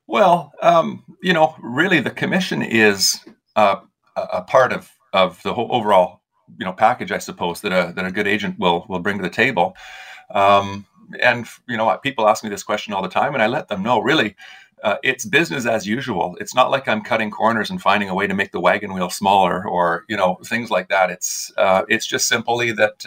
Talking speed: 220 wpm